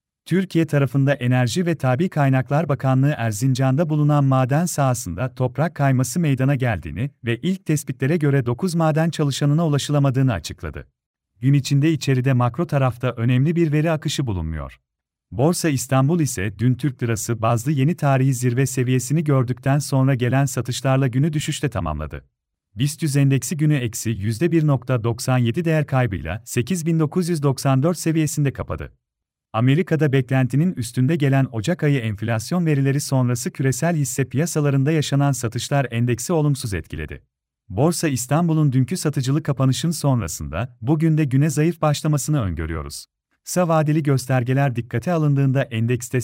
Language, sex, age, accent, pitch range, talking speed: Turkish, male, 40-59, native, 125-155 Hz, 125 wpm